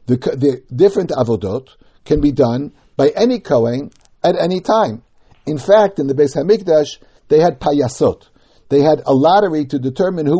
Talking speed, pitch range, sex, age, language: 165 wpm, 130-170 Hz, male, 60-79, English